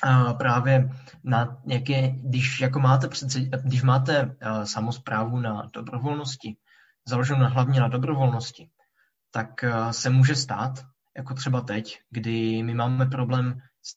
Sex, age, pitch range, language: male, 20-39, 120-135 Hz, Czech